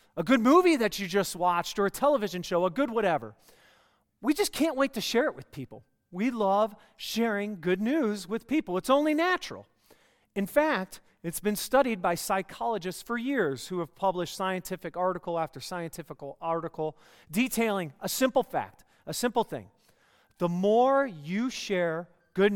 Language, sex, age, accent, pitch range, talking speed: English, male, 40-59, American, 170-230 Hz, 165 wpm